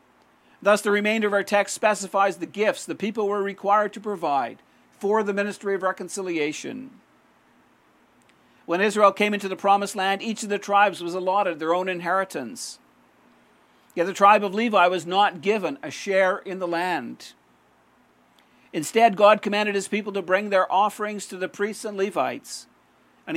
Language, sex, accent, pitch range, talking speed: English, male, American, 175-205 Hz, 165 wpm